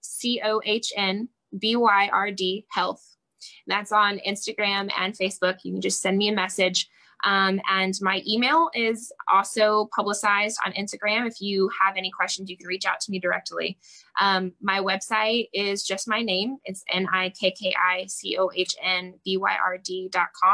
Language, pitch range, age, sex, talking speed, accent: English, 185-220 Hz, 10-29, female, 130 wpm, American